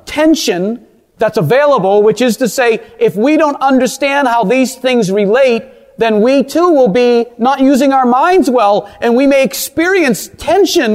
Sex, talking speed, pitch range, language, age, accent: male, 165 wpm, 225-295 Hz, English, 40-59, American